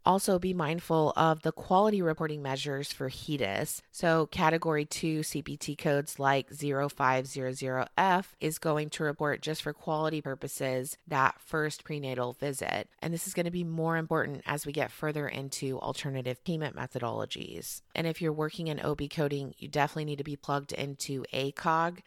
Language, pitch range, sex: English, 135-165 Hz, female